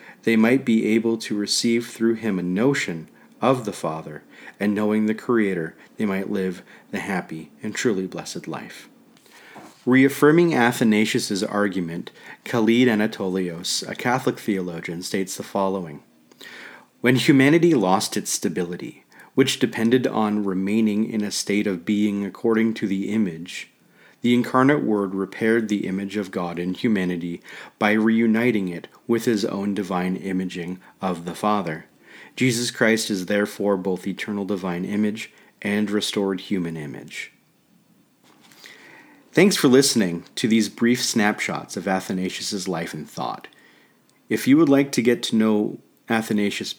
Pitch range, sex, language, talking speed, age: 95-115 Hz, male, English, 140 wpm, 40-59